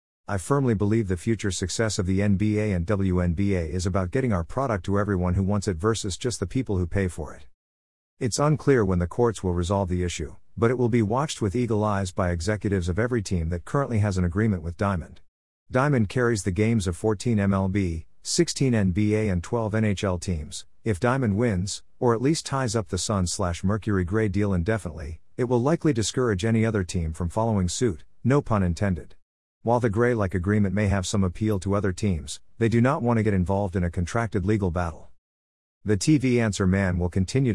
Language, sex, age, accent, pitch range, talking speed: English, male, 50-69, American, 90-115 Hz, 205 wpm